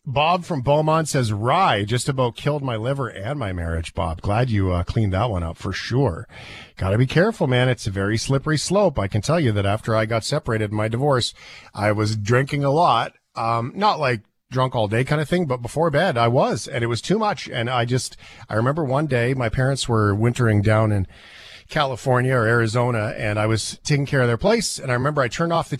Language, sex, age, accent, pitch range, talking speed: English, male, 40-59, American, 110-145 Hz, 235 wpm